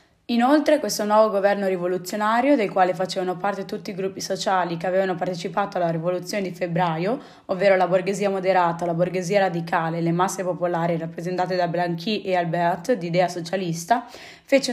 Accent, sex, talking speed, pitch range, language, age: native, female, 160 wpm, 180-220 Hz, Italian, 20-39